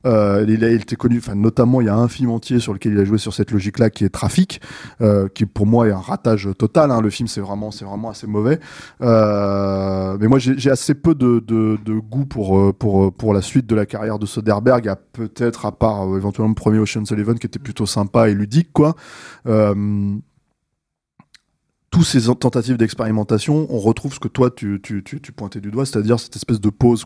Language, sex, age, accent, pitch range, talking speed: French, male, 20-39, French, 110-135 Hz, 220 wpm